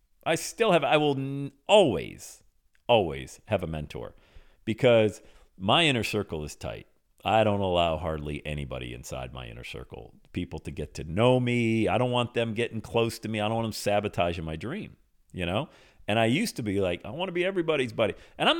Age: 50-69